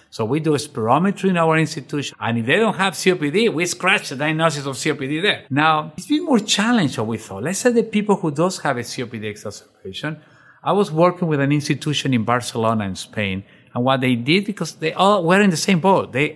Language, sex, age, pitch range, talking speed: English, male, 50-69, 120-160 Hz, 230 wpm